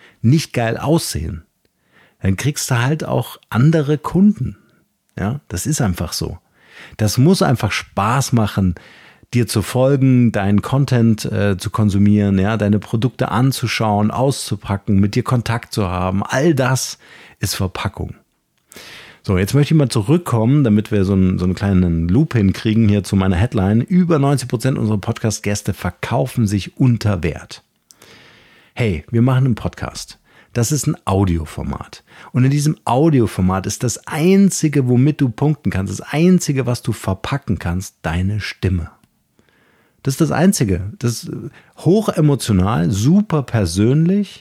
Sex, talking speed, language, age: male, 145 wpm, German, 50-69